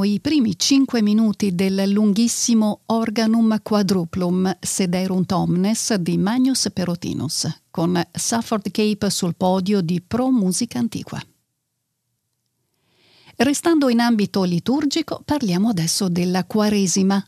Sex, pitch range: female, 180-225 Hz